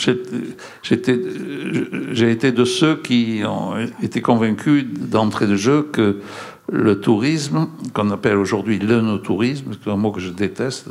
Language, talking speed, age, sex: French, 145 wpm, 60-79, male